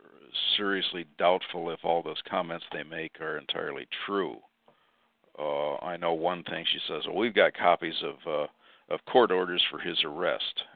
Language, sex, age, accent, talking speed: English, male, 50-69, American, 165 wpm